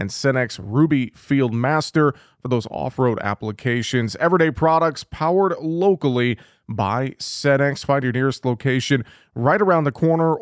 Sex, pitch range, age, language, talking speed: male, 120-145 Hz, 30-49, English, 125 wpm